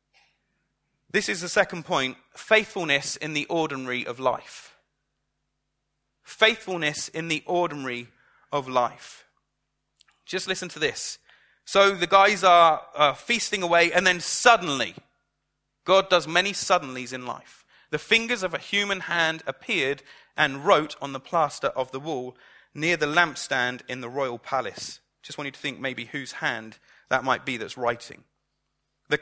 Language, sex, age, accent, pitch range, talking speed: English, male, 30-49, British, 150-195 Hz, 150 wpm